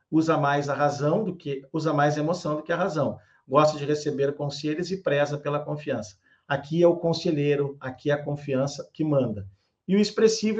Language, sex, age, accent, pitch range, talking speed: Portuguese, male, 50-69, Brazilian, 140-185 Hz, 200 wpm